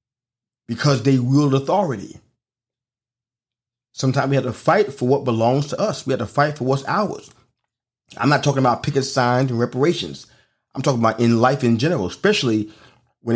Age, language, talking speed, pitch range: 30-49, English, 170 wpm, 115-135 Hz